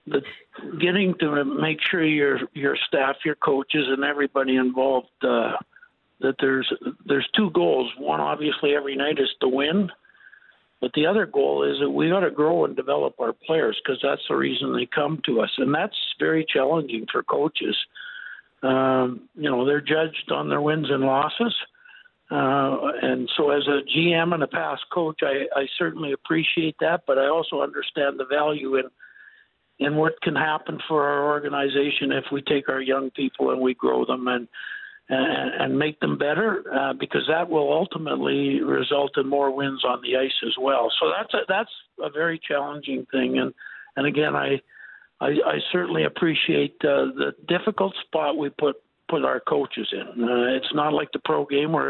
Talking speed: 180 wpm